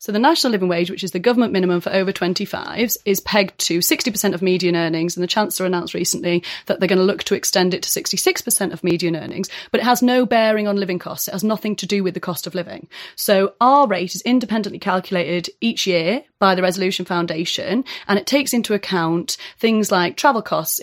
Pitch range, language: 180-215 Hz, English